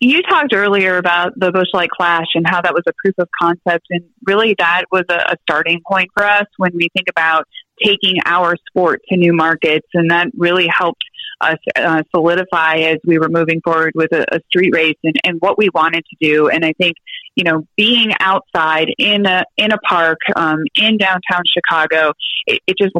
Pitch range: 165-195 Hz